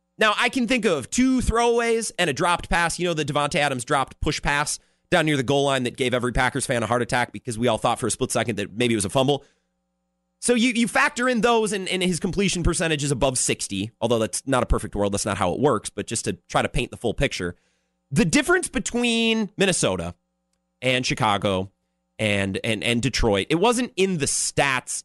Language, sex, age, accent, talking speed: English, male, 30-49, American, 230 wpm